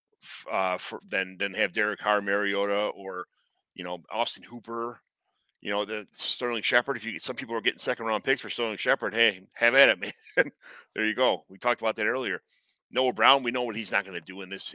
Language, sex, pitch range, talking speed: English, male, 105-125 Hz, 225 wpm